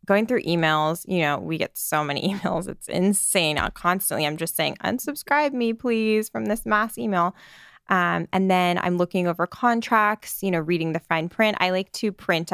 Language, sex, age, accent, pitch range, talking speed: English, female, 20-39, American, 160-190 Hz, 190 wpm